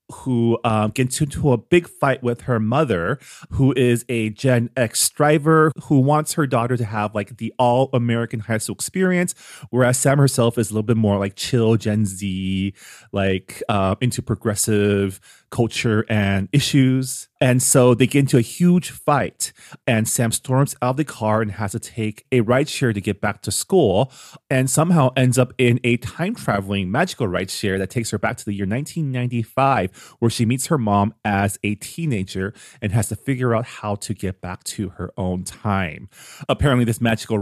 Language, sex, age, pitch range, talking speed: English, male, 30-49, 105-130 Hz, 190 wpm